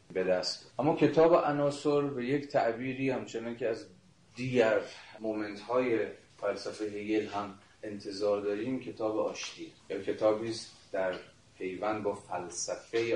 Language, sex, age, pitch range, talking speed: Persian, male, 30-49, 100-125 Hz, 120 wpm